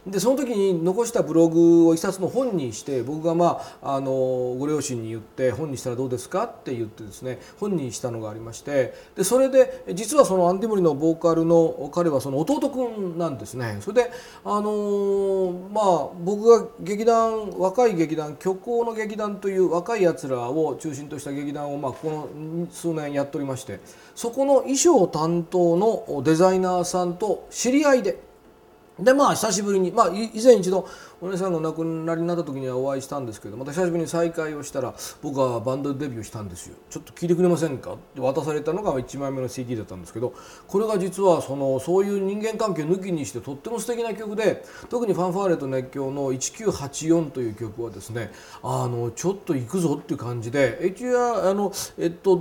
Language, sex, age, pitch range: Japanese, male, 40-59, 140-195 Hz